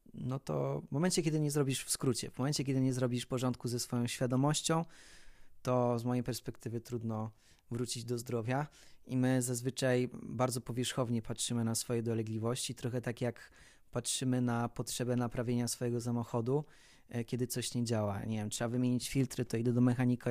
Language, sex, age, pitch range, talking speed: Polish, male, 20-39, 115-130 Hz, 170 wpm